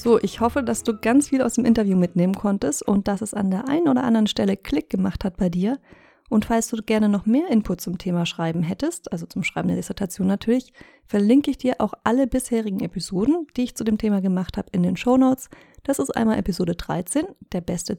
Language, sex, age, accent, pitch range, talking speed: German, female, 30-49, German, 185-240 Hz, 225 wpm